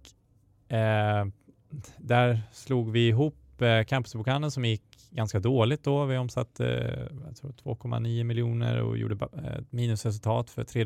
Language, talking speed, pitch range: Swedish, 140 wpm, 100-120 Hz